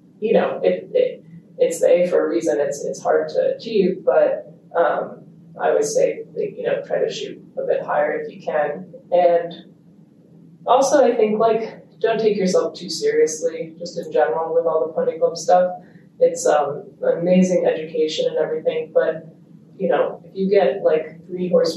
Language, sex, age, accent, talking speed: English, female, 20-39, American, 180 wpm